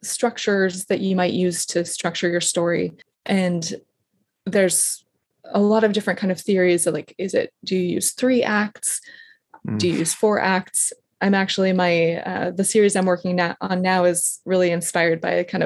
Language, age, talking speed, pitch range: English, 20-39, 180 wpm, 180-215 Hz